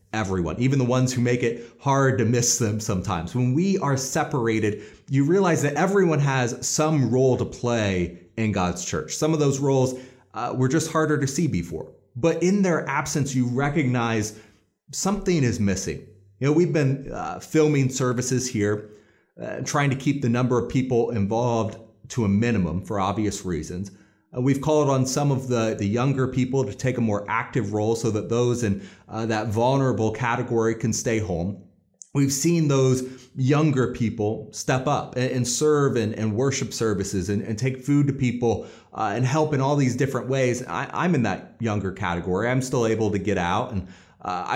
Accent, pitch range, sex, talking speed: American, 115-140 Hz, male, 185 wpm